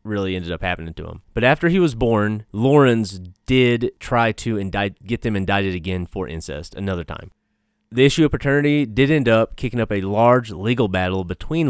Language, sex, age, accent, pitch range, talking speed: English, male, 30-49, American, 100-135 Hz, 195 wpm